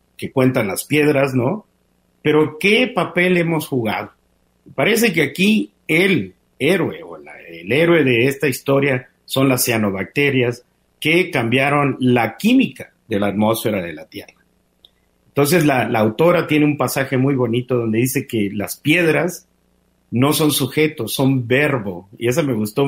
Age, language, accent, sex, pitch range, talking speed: 50-69, Spanish, Mexican, male, 110-150 Hz, 150 wpm